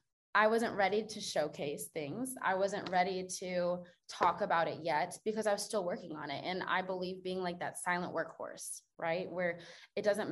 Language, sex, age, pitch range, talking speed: English, female, 20-39, 180-210 Hz, 190 wpm